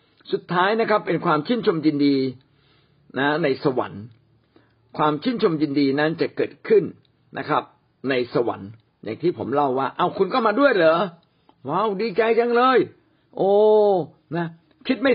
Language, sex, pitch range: Thai, male, 130-170 Hz